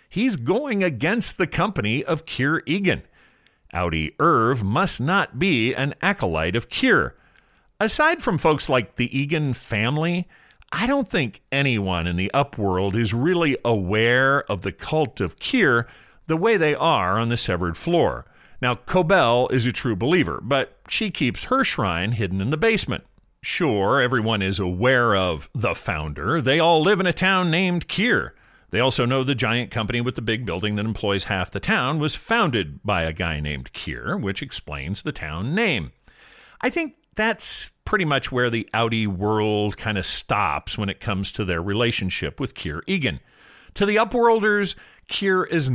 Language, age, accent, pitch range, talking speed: English, 40-59, American, 100-165 Hz, 170 wpm